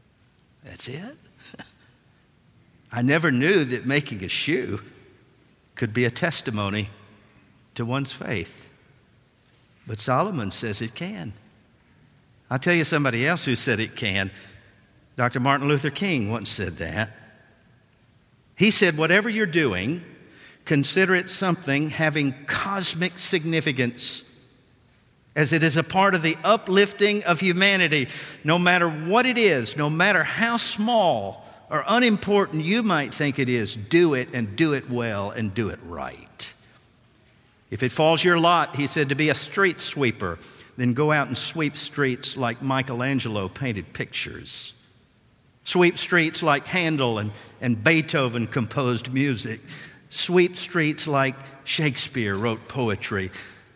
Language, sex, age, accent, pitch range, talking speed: English, male, 50-69, American, 115-165 Hz, 135 wpm